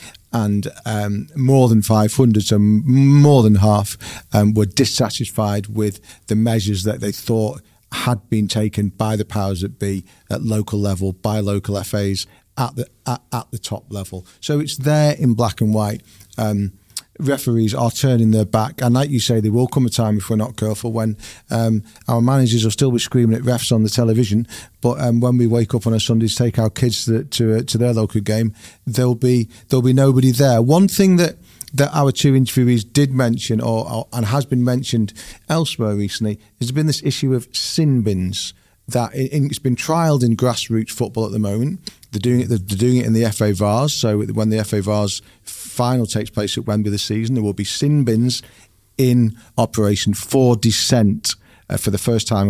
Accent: British